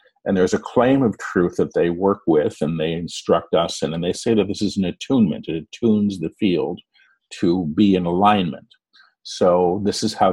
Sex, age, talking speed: male, 50-69, 205 wpm